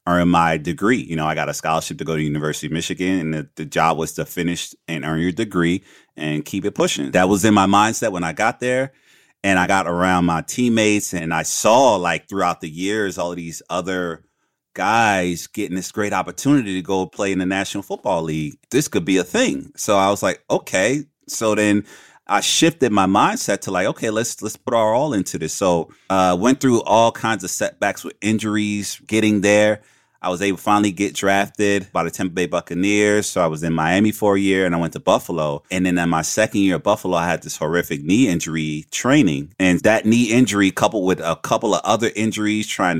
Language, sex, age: English, male, 30-49